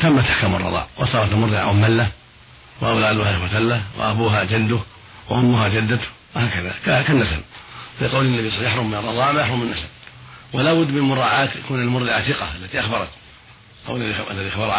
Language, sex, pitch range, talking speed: Arabic, male, 100-120 Hz, 150 wpm